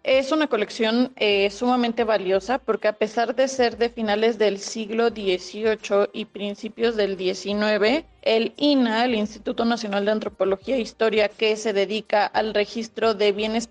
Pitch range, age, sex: 210-235 Hz, 30-49, female